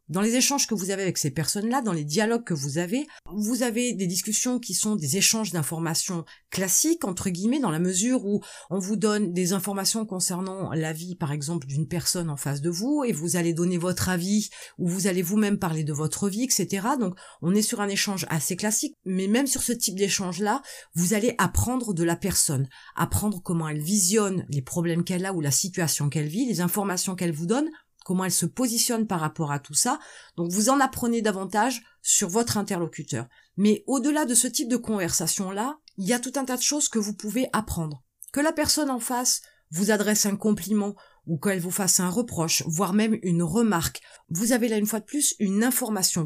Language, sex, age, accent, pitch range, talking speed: French, female, 30-49, French, 175-235 Hz, 215 wpm